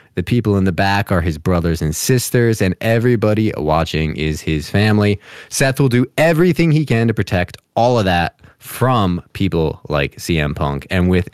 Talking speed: 180 wpm